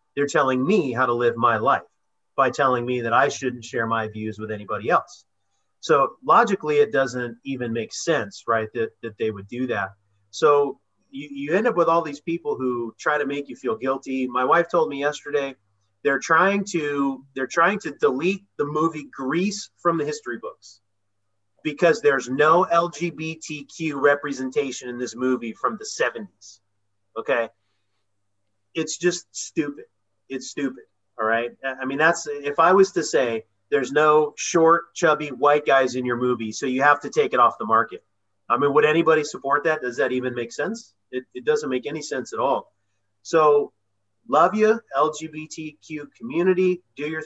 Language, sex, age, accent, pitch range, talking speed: English, male, 30-49, American, 120-165 Hz, 180 wpm